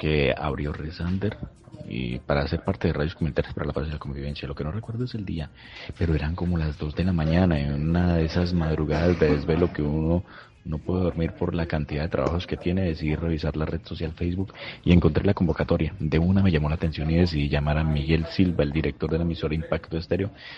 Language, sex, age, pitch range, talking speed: Spanish, male, 30-49, 75-90 Hz, 230 wpm